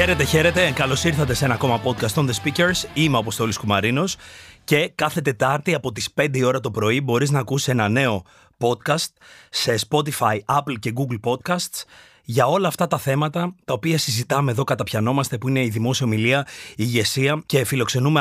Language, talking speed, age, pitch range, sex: Greek, 180 wpm, 30-49, 115-150 Hz, male